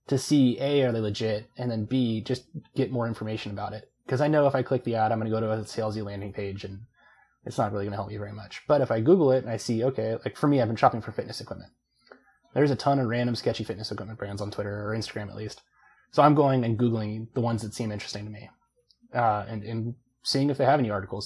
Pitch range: 105-125 Hz